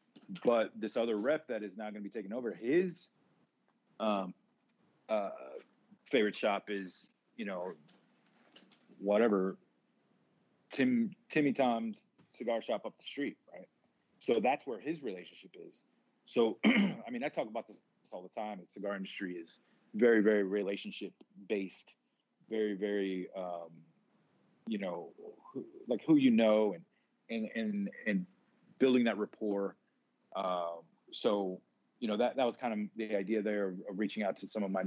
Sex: male